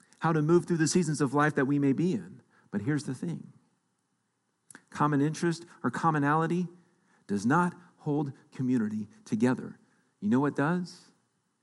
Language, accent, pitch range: English, American, 145-195 Hz